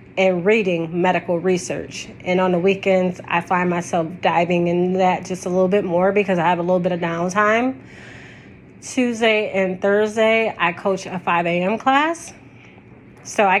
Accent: American